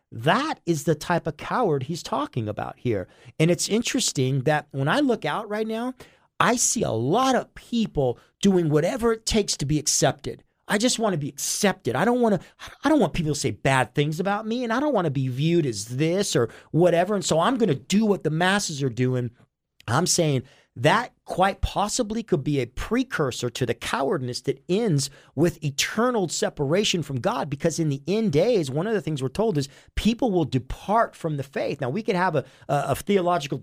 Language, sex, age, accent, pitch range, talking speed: English, male, 40-59, American, 140-200 Hz, 215 wpm